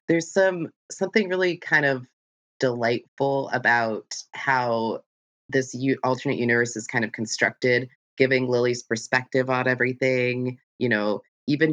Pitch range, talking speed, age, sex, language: 110-140 Hz, 130 wpm, 20-39, female, English